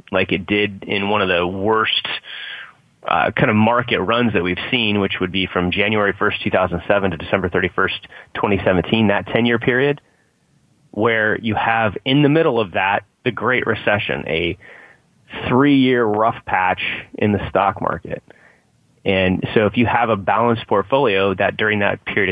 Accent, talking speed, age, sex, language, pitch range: American, 180 wpm, 30-49, male, English, 95-115 Hz